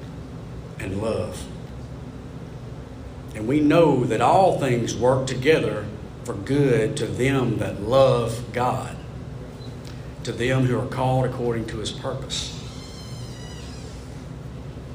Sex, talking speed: male, 100 wpm